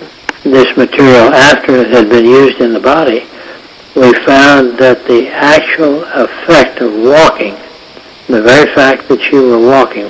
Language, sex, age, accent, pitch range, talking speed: English, male, 60-79, American, 120-140 Hz, 150 wpm